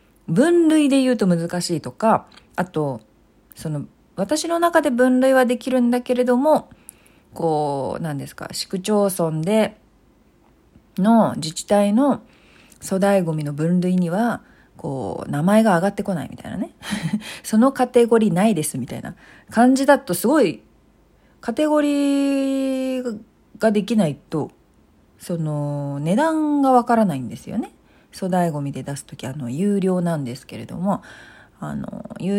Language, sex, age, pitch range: Japanese, female, 40-59, 165-250 Hz